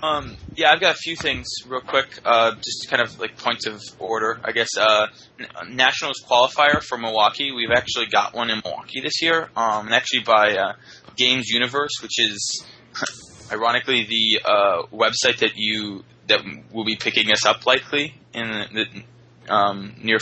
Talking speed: 170 wpm